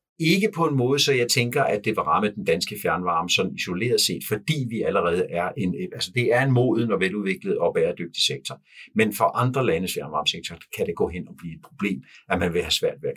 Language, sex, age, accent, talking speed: Danish, male, 60-79, native, 235 wpm